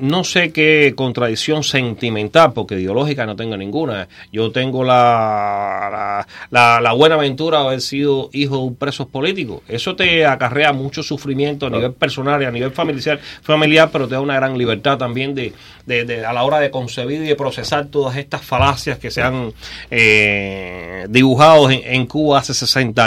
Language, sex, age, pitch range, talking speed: English, male, 30-49, 125-170 Hz, 180 wpm